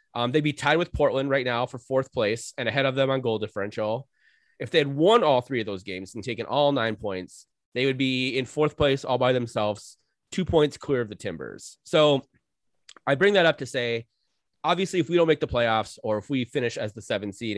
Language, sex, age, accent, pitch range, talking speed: English, male, 30-49, American, 115-155 Hz, 235 wpm